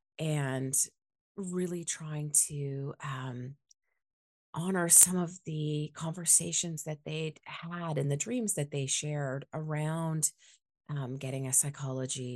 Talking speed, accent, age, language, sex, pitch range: 115 wpm, American, 30-49, English, female, 135-170 Hz